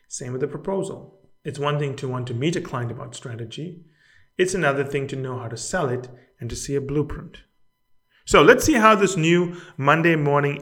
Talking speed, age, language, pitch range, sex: 210 wpm, 30-49, English, 130-165 Hz, male